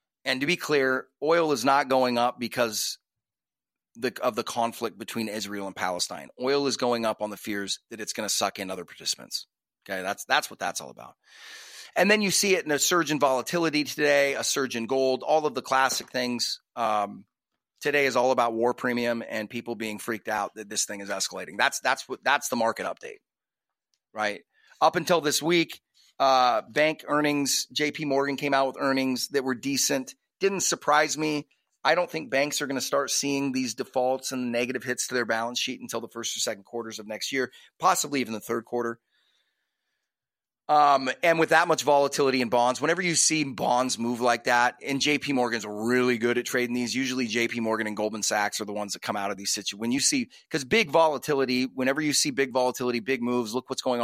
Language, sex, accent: English, male, American